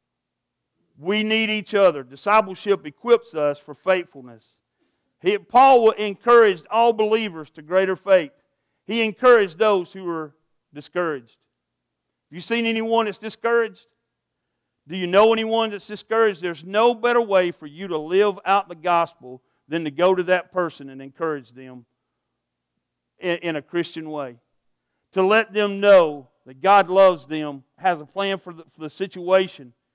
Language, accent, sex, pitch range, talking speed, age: English, American, male, 155-210 Hz, 145 wpm, 50-69